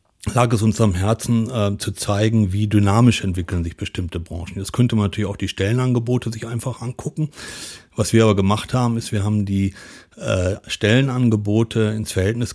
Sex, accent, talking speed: male, German, 175 wpm